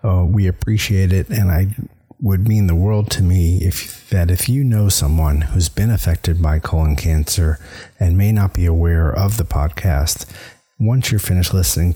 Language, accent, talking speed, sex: English, American, 180 wpm, male